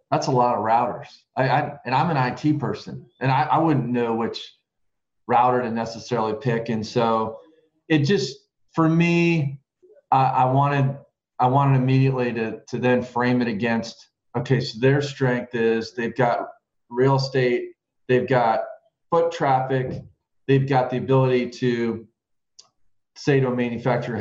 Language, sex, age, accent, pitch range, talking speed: English, male, 40-59, American, 115-135 Hz, 155 wpm